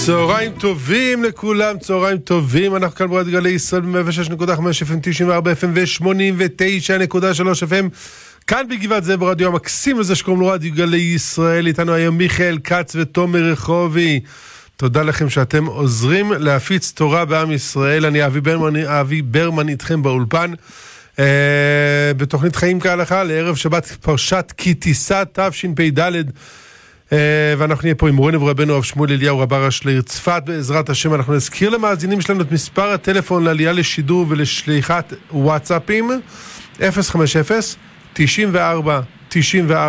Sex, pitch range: male, 145-180 Hz